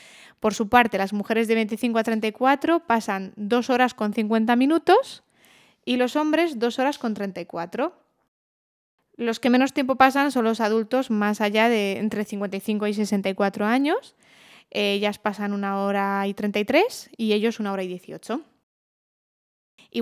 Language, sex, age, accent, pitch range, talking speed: Spanish, female, 20-39, Spanish, 210-255 Hz, 155 wpm